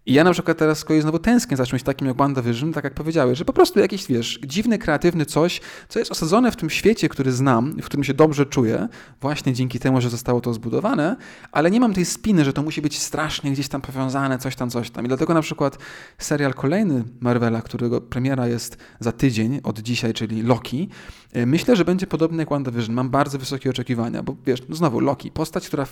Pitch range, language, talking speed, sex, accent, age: 125-160 Hz, Polish, 220 wpm, male, native, 20-39